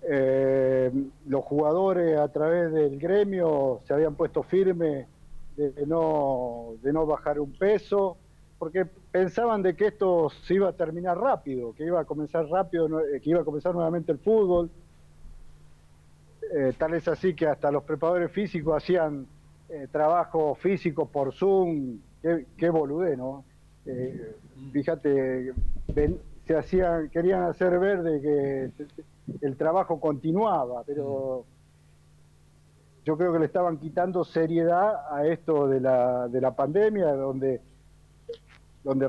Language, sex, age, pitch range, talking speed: Spanish, male, 50-69, 135-175 Hz, 140 wpm